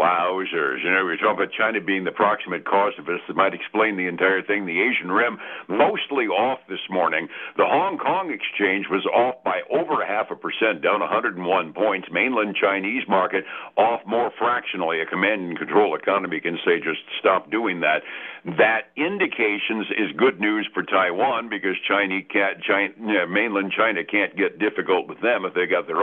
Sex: male